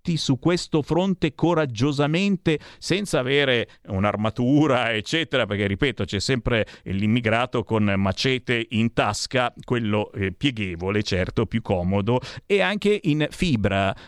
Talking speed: 115 wpm